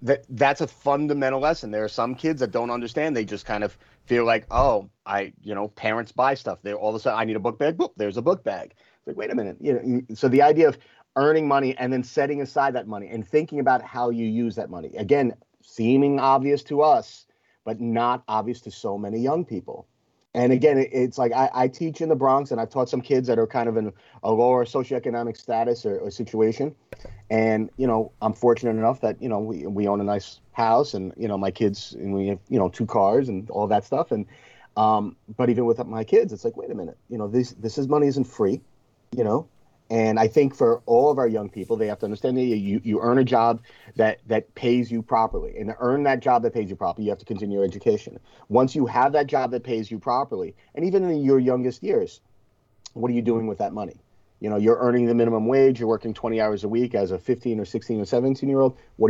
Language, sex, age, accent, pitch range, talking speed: English, male, 30-49, American, 105-130 Hz, 245 wpm